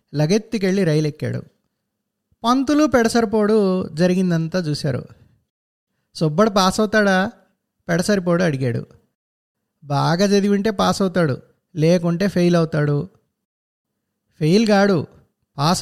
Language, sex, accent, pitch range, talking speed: Telugu, male, native, 155-205 Hz, 85 wpm